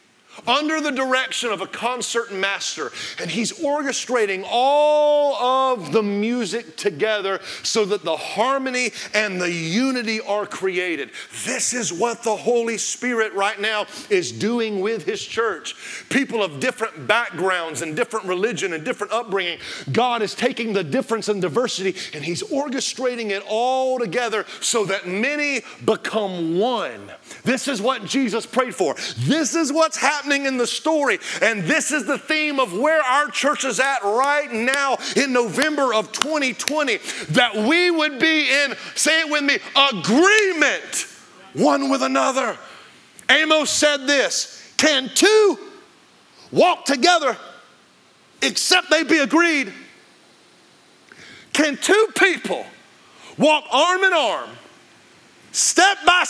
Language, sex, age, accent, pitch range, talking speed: English, male, 40-59, American, 220-305 Hz, 135 wpm